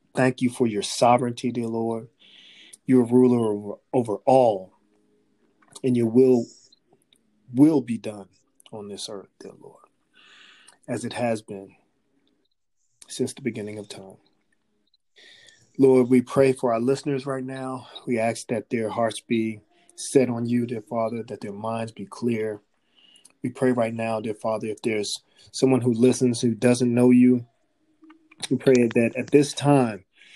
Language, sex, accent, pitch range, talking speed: English, male, American, 110-130 Hz, 155 wpm